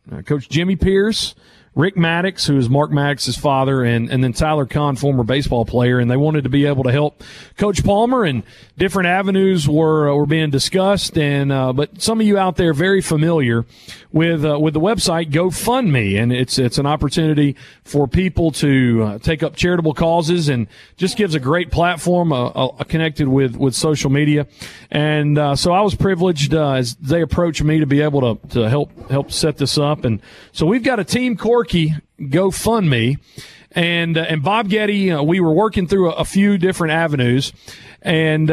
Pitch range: 140-185 Hz